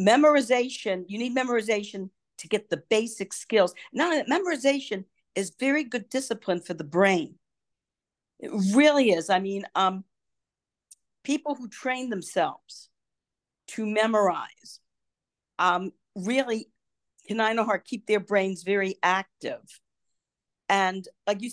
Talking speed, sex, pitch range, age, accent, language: 125 wpm, female, 190-245 Hz, 50-69, American, English